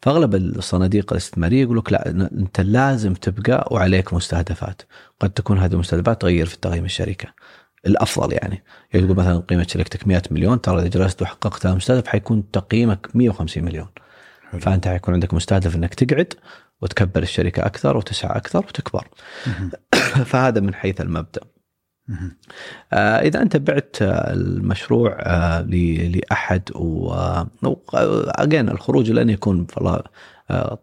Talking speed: 120 wpm